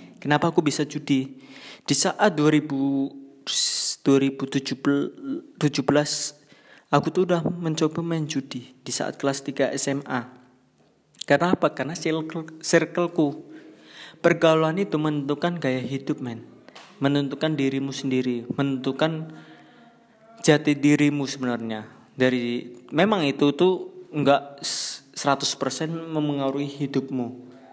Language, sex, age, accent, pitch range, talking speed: Indonesian, male, 20-39, native, 135-165 Hz, 95 wpm